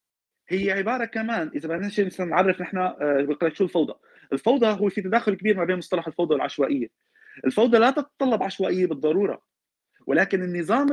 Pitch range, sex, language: 185-245 Hz, male, Arabic